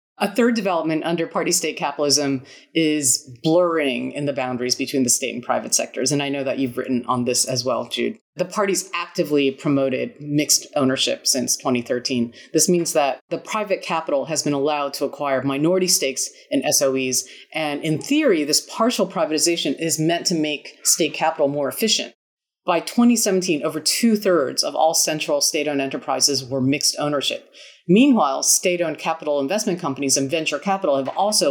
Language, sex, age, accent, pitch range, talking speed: English, female, 30-49, American, 135-170 Hz, 170 wpm